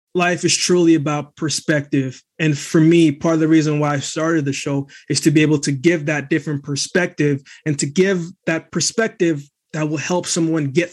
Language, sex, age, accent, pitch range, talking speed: English, male, 20-39, American, 150-180 Hz, 200 wpm